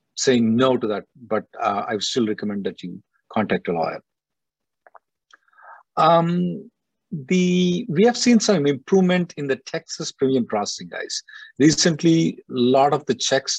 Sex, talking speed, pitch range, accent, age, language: male, 150 wpm, 130-180 Hz, Indian, 50-69, English